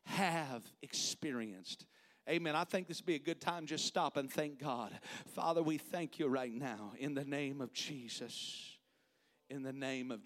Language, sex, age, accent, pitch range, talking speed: English, male, 40-59, American, 160-220 Hz, 180 wpm